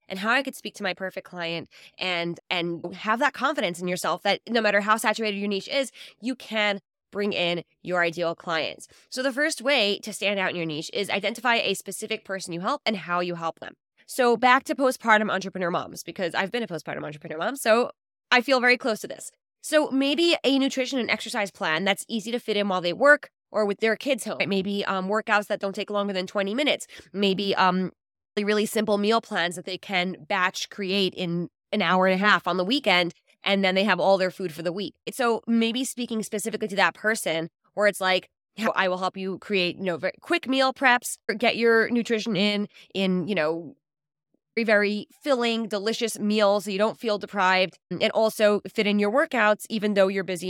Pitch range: 180-225 Hz